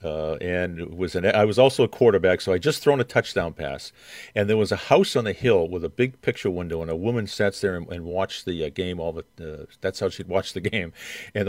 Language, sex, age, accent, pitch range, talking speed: English, male, 50-69, American, 105-140 Hz, 260 wpm